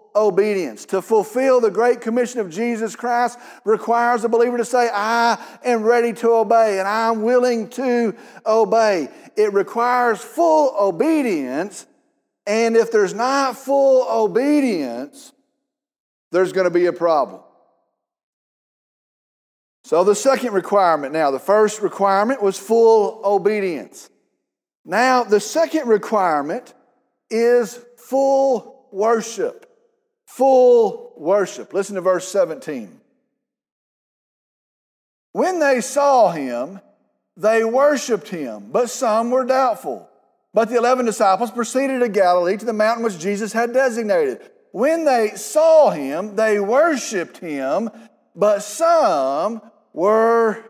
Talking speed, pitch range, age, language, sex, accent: 115 wpm, 210-265 Hz, 50-69, English, male, American